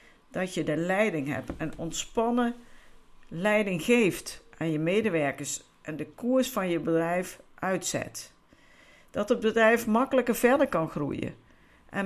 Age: 50-69